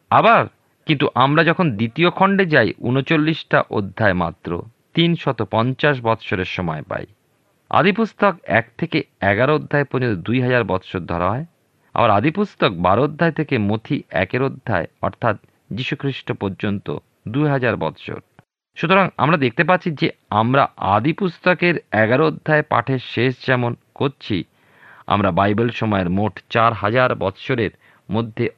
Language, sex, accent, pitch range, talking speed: Bengali, male, native, 105-155 Hz, 120 wpm